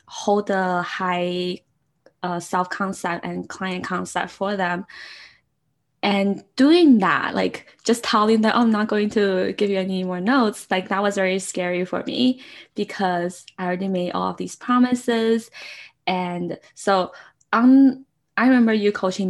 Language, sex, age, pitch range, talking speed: English, female, 10-29, 180-210 Hz, 145 wpm